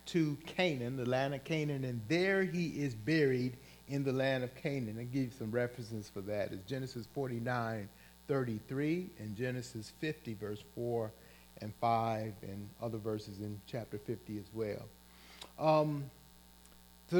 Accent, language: American, English